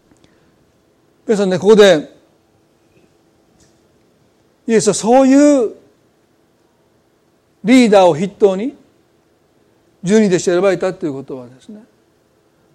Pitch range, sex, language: 170-225 Hz, male, Japanese